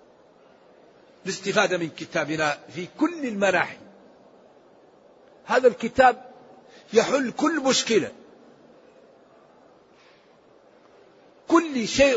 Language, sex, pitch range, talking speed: Arabic, male, 195-235 Hz, 65 wpm